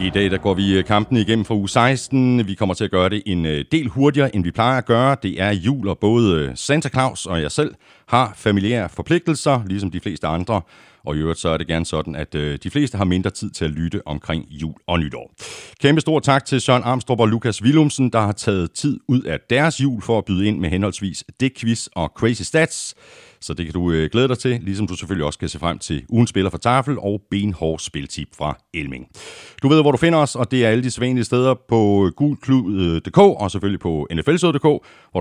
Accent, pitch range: native, 85-130 Hz